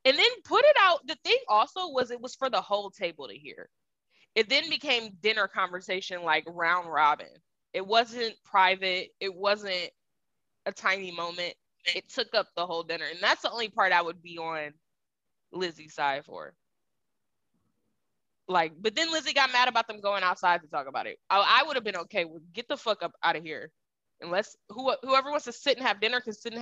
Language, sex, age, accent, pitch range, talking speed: English, female, 20-39, American, 190-280 Hz, 205 wpm